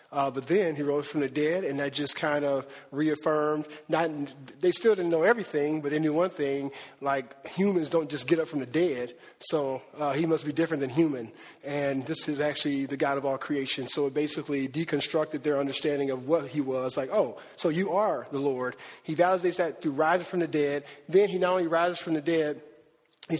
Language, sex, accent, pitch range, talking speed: English, male, American, 145-170 Hz, 220 wpm